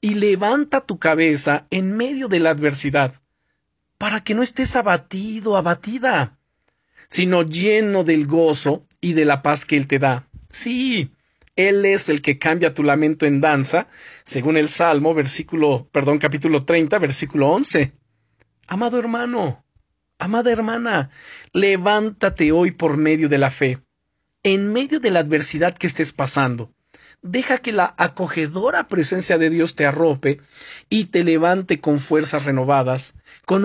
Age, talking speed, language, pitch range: 40-59, 145 wpm, Spanish, 140-190 Hz